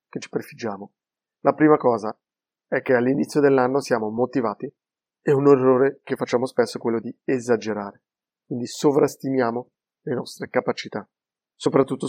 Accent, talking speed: native, 135 wpm